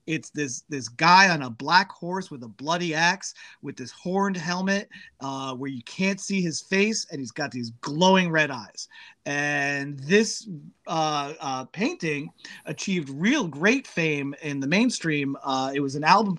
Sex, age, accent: male, 30-49, American